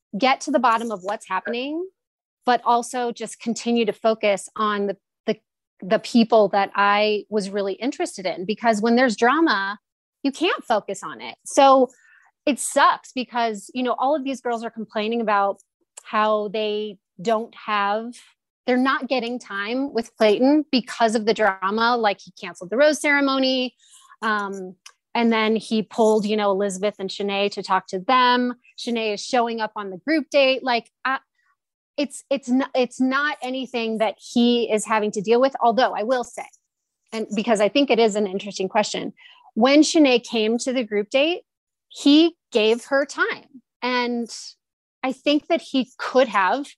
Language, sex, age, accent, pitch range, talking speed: English, female, 30-49, American, 210-260 Hz, 170 wpm